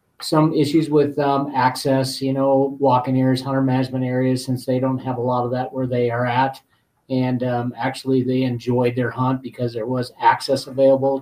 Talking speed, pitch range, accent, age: 195 wpm, 125-135 Hz, American, 40-59